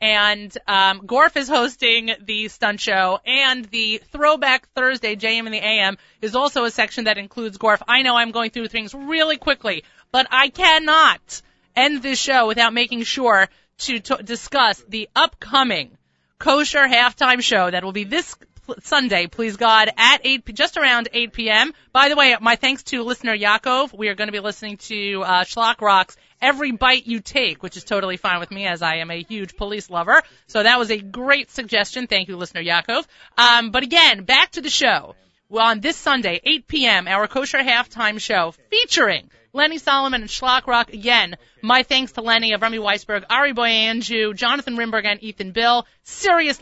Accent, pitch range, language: American, 210-265 Hz, English